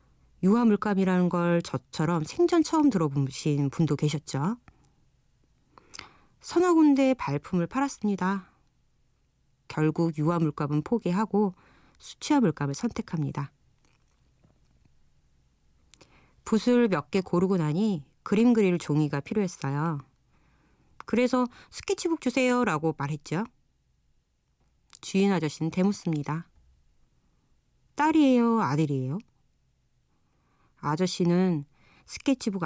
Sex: female